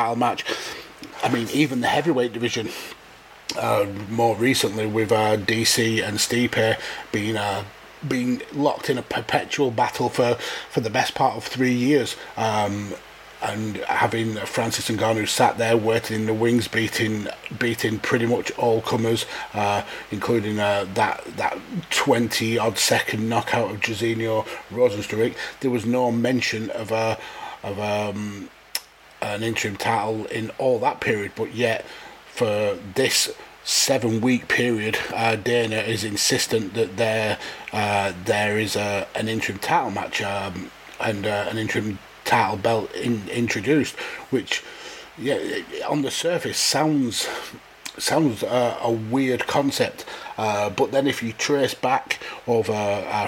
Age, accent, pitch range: 30-49, British, 105-120 Hz